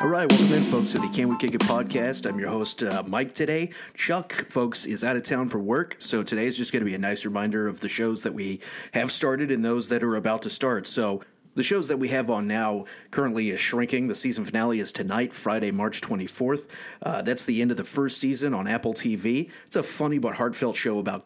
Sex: male